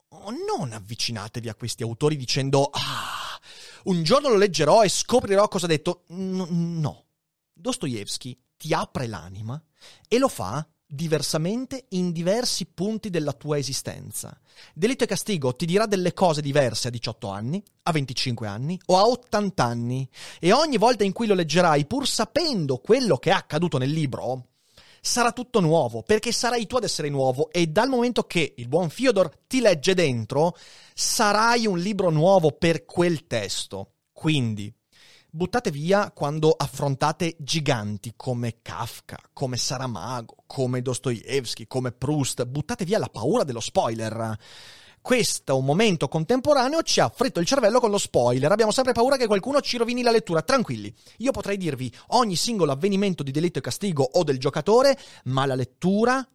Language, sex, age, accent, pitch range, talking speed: Italian, male, 30-49, native, 135-205 Hz, 155 wpm